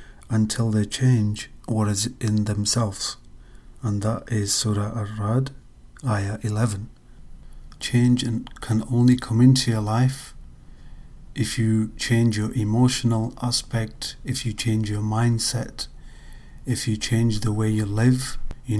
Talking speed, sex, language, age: 130 wpm, male, English, 40-59